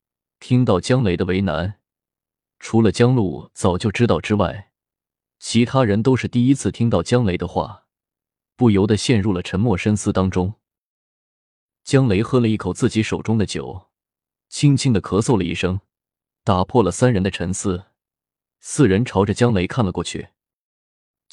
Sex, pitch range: male, 95-120 Hz